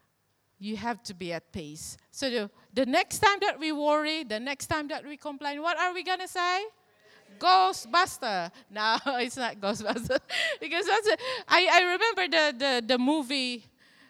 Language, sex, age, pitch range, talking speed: English, female, 30-49, 235-350 Hz, 175 wpm